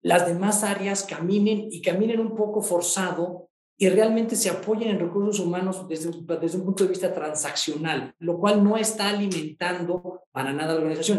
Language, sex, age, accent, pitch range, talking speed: Spanish, male, 40-59, Mexican, 165-200 Hz, 170 wpm